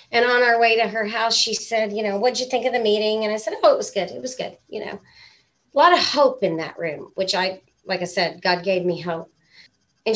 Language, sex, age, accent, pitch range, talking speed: English, female, 40-59, American, 190-240 Hz, 270 wpm